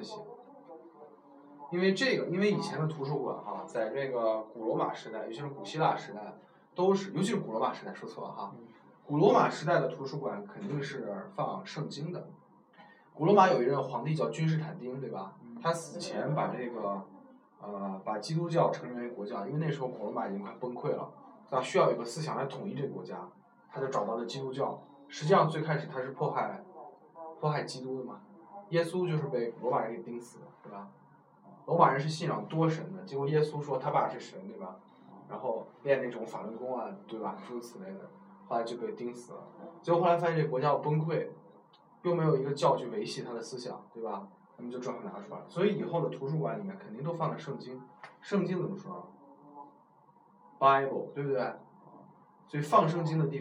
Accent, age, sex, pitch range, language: native, 20-39, male, 125-170 Hz, Chinese